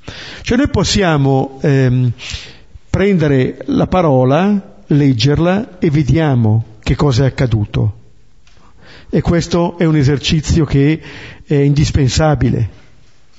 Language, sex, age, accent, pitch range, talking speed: Italian, male, 50-69, native, 135-200 Hz, 100 wpm